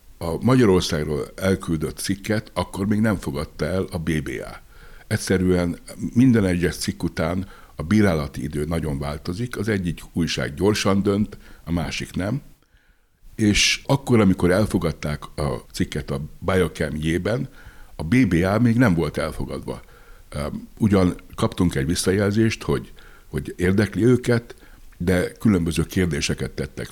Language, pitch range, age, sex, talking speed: Hungarian, 75-100 Hz, 60-79, male, 125 wpm